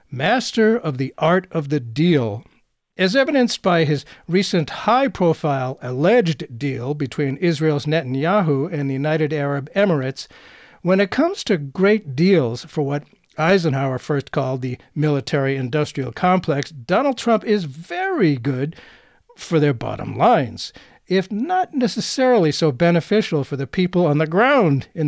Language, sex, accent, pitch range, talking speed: English, male, American, 140-190 Hz, 140 wpm